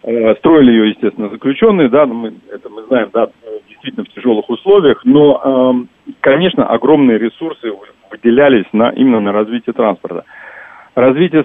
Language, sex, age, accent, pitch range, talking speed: Russian, male, 40-59, native, 110-150 Hz, 125 wpm